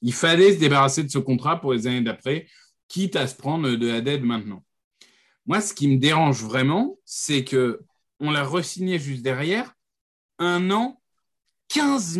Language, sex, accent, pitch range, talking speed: French, male, French, 130-185 Hz, 165 wpm